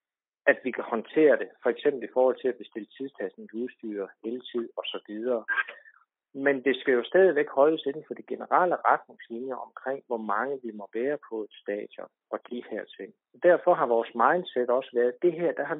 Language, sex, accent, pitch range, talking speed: Danish, male, native, 125-200 Hz, 205 wpm